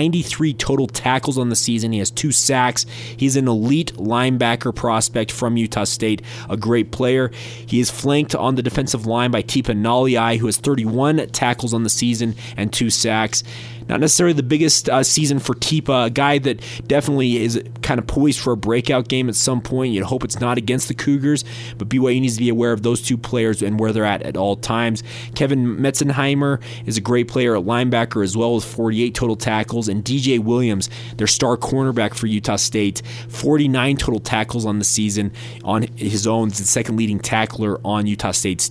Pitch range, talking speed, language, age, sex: 110-130 Hz, 195 wpm, English, 20-39, male